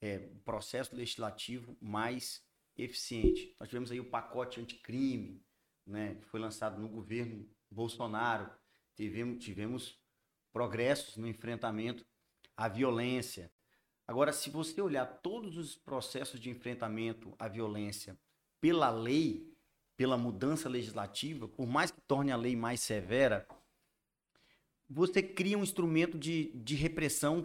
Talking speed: 120 wpm